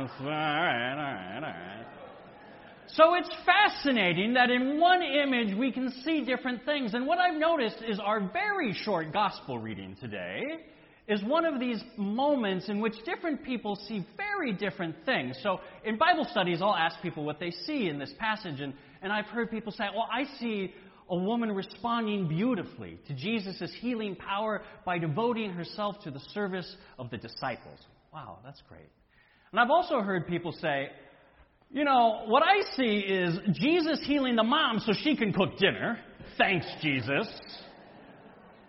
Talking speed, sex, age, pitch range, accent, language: 155 wpm, male, 40-59, 175-250 Hz, American, English